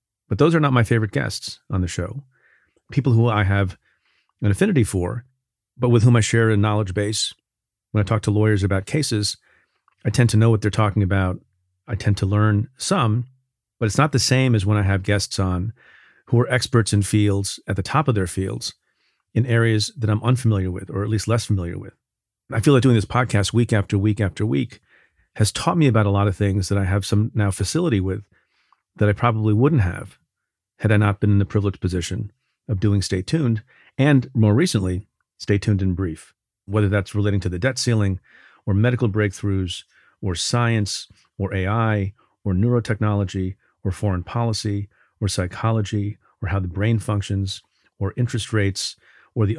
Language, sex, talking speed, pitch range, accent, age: English, male, 195 wpm, 100-115 Hz, American, 40-59